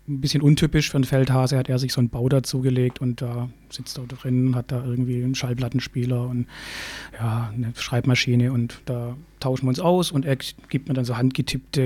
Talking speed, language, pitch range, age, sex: 205 wpm, German, 125-140 Hz, 30-49, male